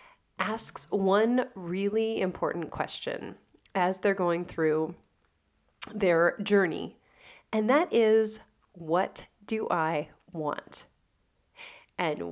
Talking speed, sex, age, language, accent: 95 wpm, female, 30-49, English, American